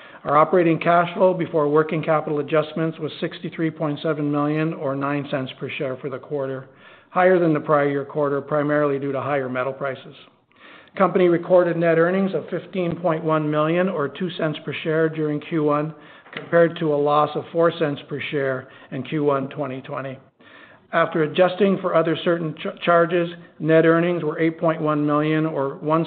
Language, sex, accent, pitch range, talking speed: English, male, American, 140-165 Hz, 155 wpm